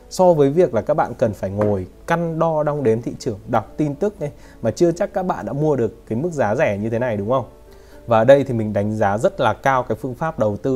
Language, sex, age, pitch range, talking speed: Vietnamese, male, 20-39, 110-140 Hz, 285 wpm